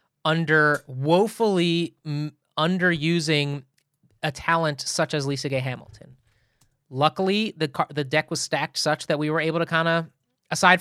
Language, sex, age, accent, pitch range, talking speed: English, male, 30-49, American, 135-170 Hz, 140 wpm